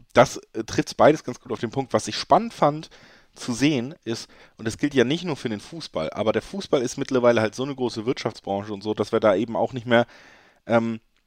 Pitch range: 110-135 Hz